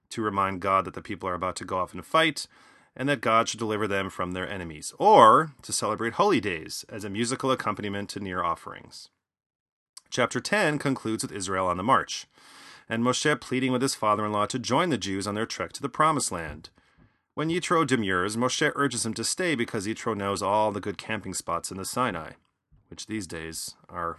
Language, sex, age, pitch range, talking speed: English, male, 30-49, 100-130 Hz, 205 wpm